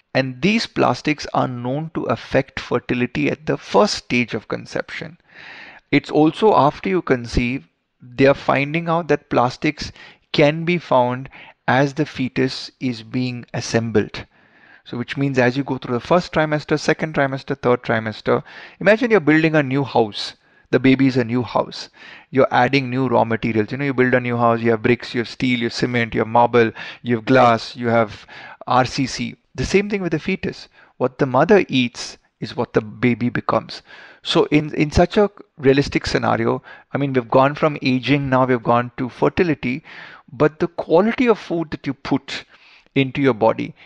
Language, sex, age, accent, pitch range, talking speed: Hindi, male, 20-39, native, 125-155 Hz, 185 wpm